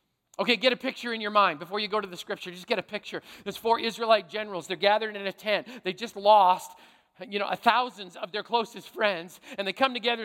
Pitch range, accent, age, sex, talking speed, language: 190-235 Hz, American, 40-59, male, 235 wpm, English